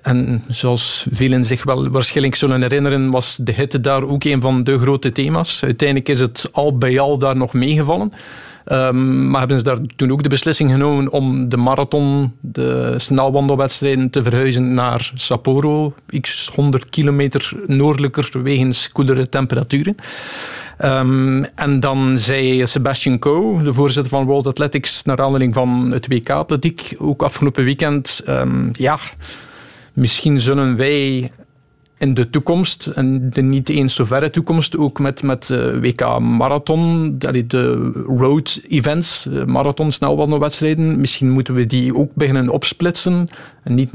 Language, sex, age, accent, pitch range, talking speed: Dutch, male, 50-69, Dutch, 130-145 Hz, 145 wpm